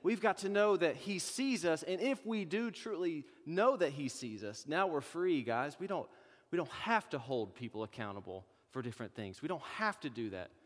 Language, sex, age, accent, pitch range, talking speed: English, male, 30-49, American, 115-155 Hz, 220 wpm